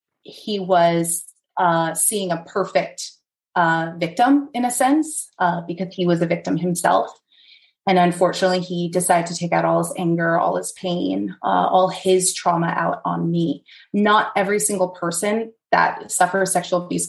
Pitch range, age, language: 170-230 Hz, 30-49, English